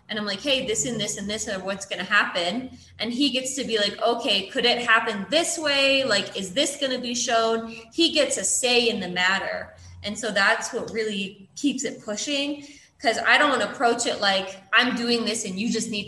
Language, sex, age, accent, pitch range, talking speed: English, female, 20-39, American, 200-245 Hz, 235 wpm